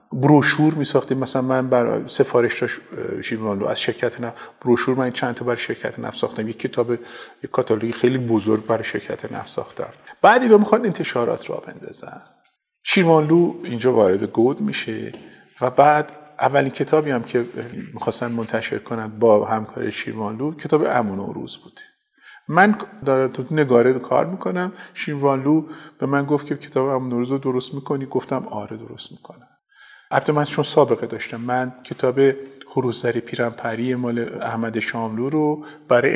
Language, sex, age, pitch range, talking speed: Persian, male, 50-69, 120-145 Hz, 140 wpm